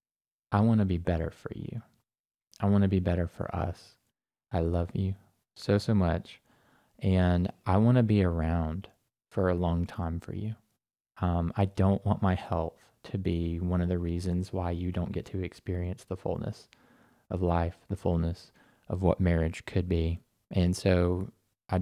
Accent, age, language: American, 20-39, English